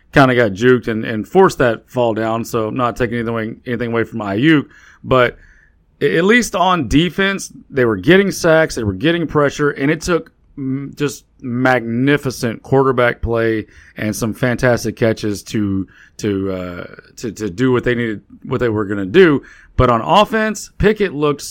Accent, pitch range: American, 115-160 Hz